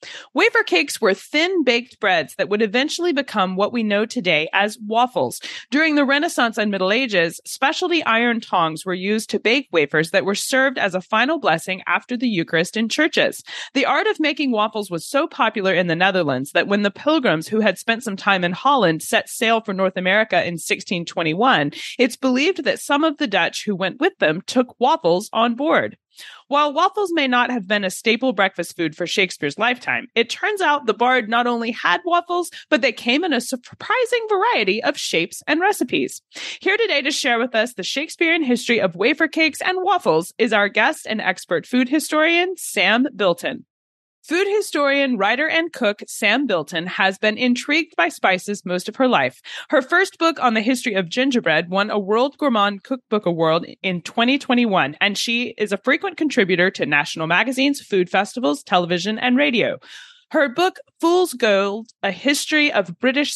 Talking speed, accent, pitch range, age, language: 185 wpm, American, 195-290 Hz, 30-49, English